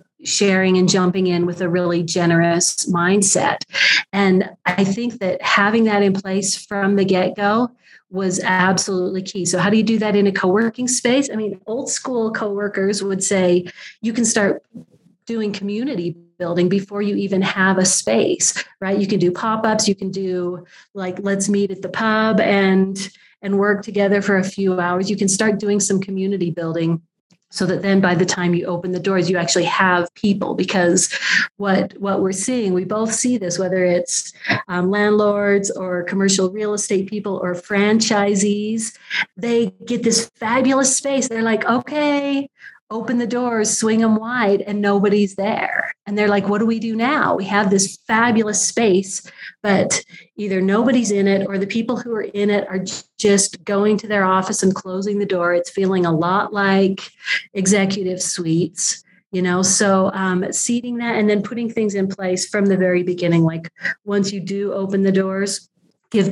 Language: English